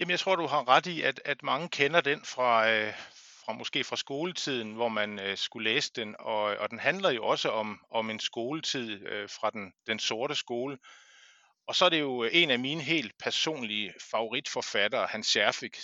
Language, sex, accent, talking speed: Danish, male, native, 170 wpm